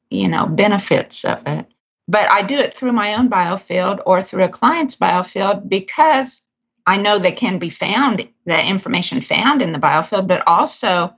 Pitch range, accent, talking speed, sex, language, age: 170-225 Hz, American, 175 wpm, female, English, 50-69